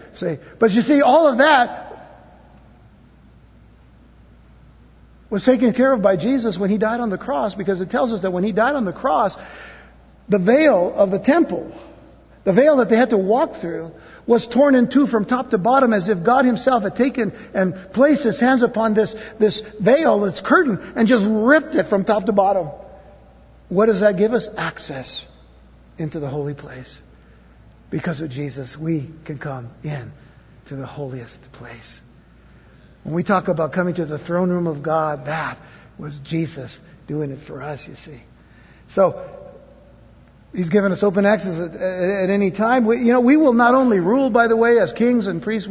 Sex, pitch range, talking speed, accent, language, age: male, 160-245 Hz, 185 wpm, American, English, 60-79